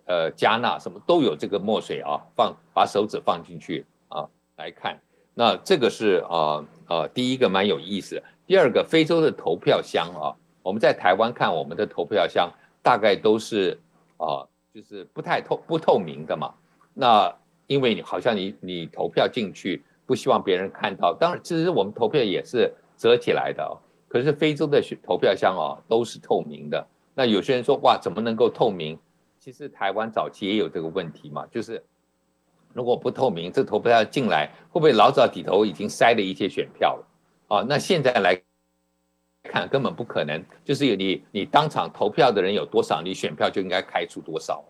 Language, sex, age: Chinese, male, 60-79